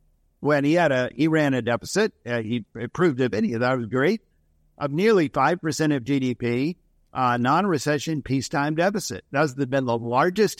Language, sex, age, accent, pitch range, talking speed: English, male, 50-69, American, 125-160 Hz, 180 wpm